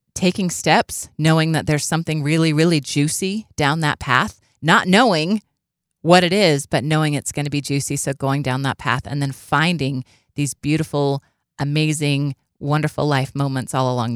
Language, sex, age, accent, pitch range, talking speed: English, female, 30-49, American, 140-170 Hz, 170 wpm